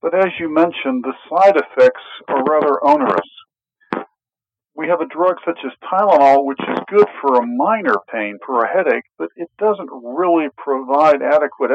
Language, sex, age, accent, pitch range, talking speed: English, male, 50-69, American, 130-205 Hz, 170 wpm